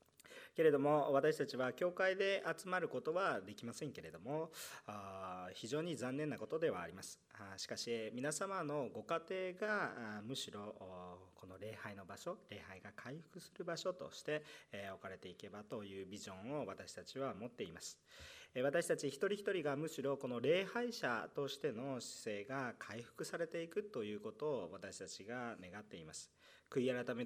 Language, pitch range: Japanese, 100-150 Hz